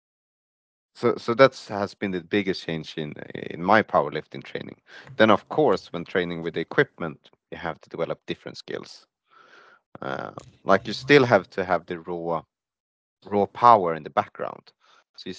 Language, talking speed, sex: Italian, 170 wpm, male